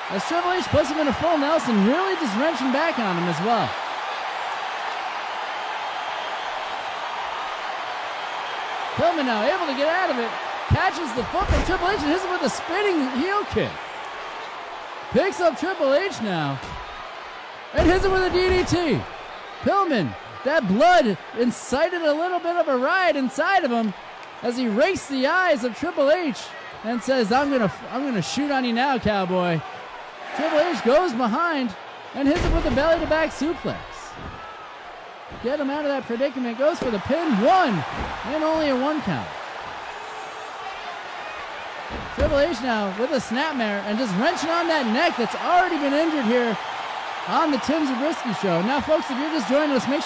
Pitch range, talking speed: 240-335 Hz, 165 wpm